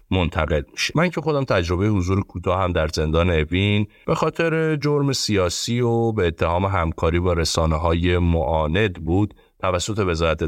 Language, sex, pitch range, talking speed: Persian, male, 80-110 Hz, 140 wpm